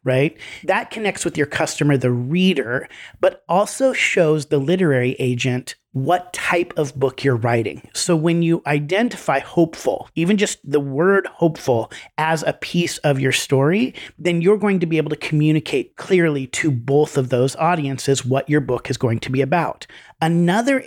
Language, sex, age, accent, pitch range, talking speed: English, male, 30-49, American, 135-170 Hz, 170 wpm